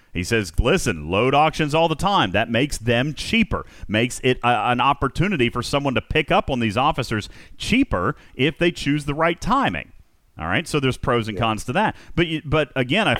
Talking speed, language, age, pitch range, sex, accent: 210 wpm, English, 40-59, 100-145 Hz, male, American